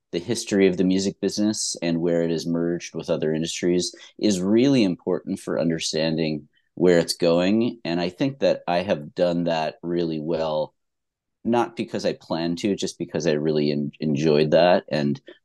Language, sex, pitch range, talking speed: English, male, 80-100 Hz, 170 wpm